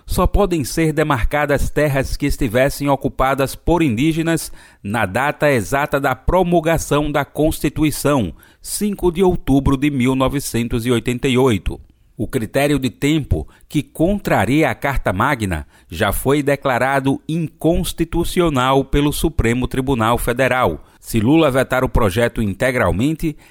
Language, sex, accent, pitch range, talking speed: Portuguese, male, Brazilian, 120-150 Hz, 115 wpm